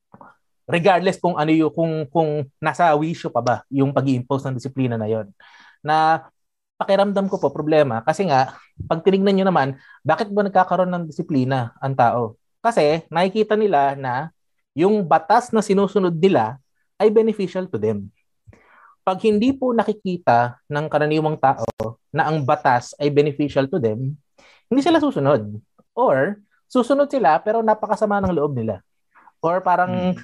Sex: male